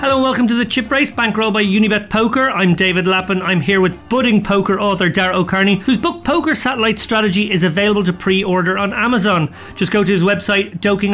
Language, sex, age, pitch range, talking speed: English, male, 30-49, 170-215 Hz, 210 wpm